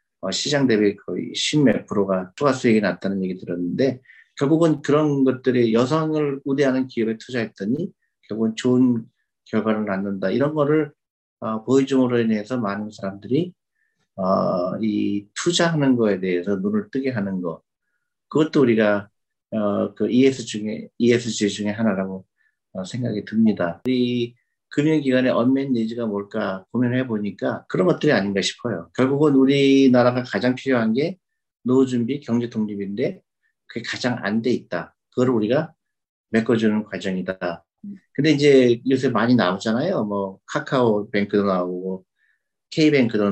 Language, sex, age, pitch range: Korean, male, 50-69, 105-135 Hz